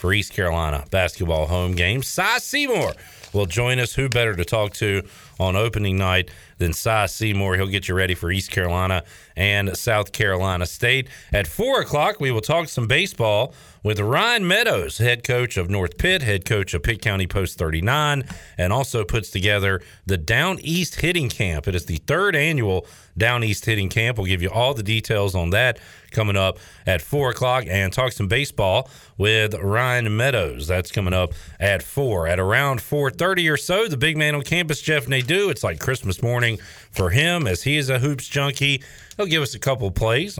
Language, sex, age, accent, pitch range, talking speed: English, male, 40-59, American, 95-135 Hz, 195 wpm